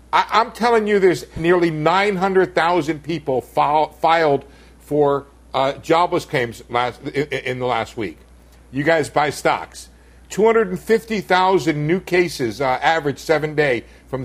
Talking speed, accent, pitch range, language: 120 wpm, American, 145-195 Hz, English